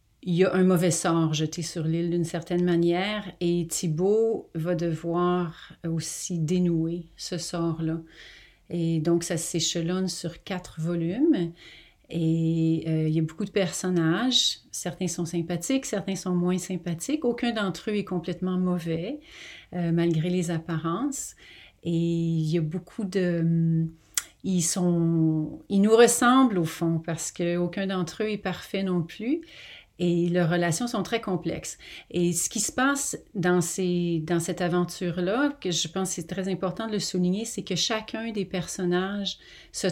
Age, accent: 40-59, Canadian